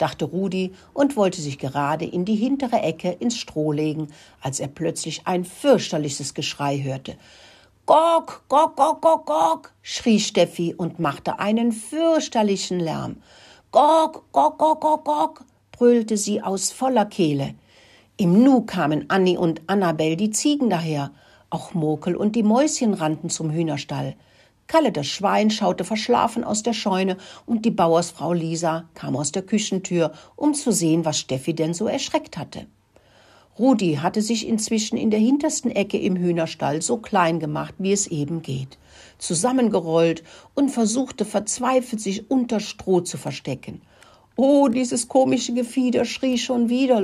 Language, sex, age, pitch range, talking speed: German, female, 60-79, 160-240 Hz, 145 wpm